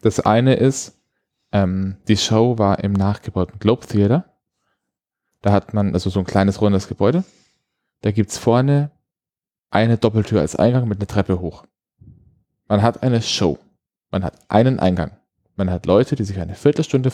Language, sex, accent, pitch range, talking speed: German, male, German, 100-130 Hz, 165 wpm